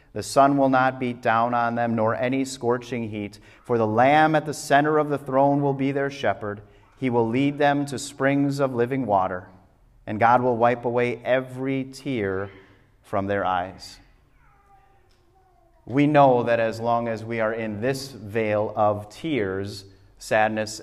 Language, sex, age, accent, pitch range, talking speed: English, male, 30-49, American, 110-140 Hz, 165 wpm